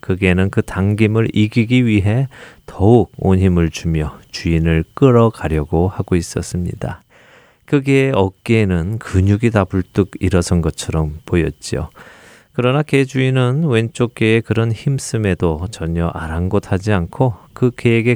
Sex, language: male, Korean